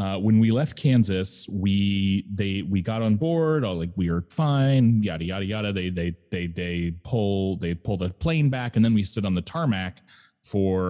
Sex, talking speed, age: male, 205 wpm, 30-49